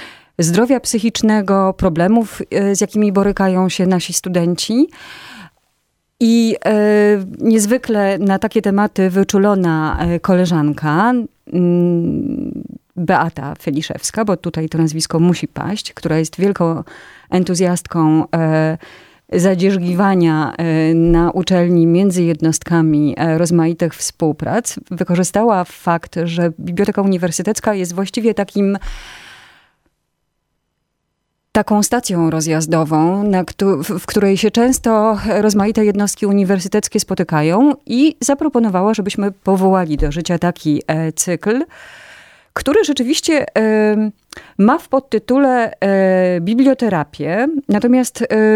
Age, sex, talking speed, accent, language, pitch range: 30-49, female, 90 wpm, native, Polish, 170-215 Hz